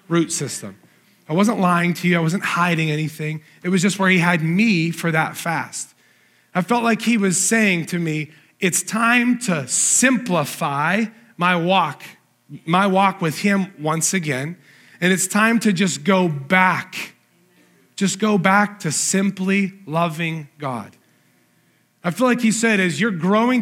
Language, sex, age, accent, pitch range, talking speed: English, male, 30-49, American, 175-225 Hz, 160 wpm